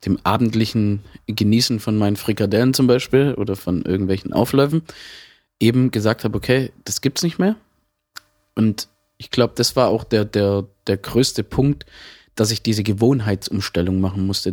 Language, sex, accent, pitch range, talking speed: German, male, German, 105-135 Hz, 150 wpm